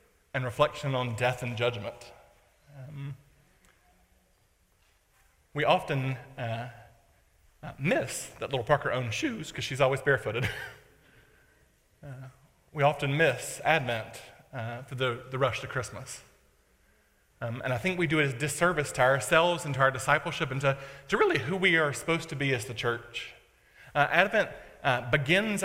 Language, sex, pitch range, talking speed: English, male, 130-160 Hz, 150 wpm